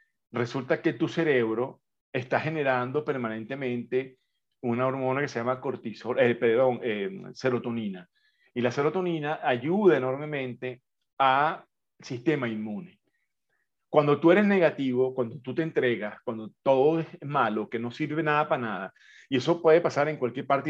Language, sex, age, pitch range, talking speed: English, male, 40-59, 125-160 Hz, 145 wpm